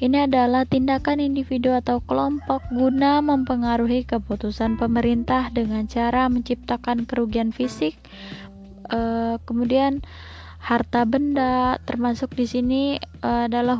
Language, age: Indonesian, 20-39